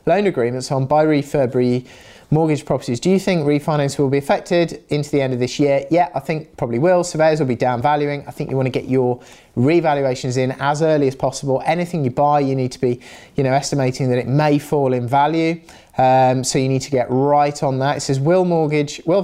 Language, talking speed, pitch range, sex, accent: English, 230 wpm, 130-155 Hz, male, British